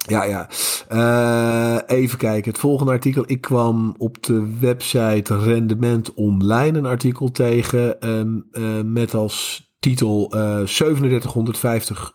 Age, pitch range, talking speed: 50-69, 105-120 Hz, 120 wpm